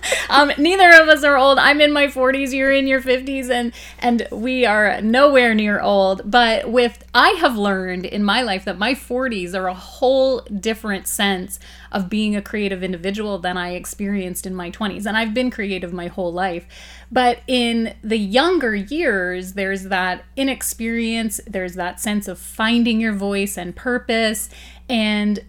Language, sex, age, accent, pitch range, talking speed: English, female, 30-49, American, 195-245 Hz, 170 wpm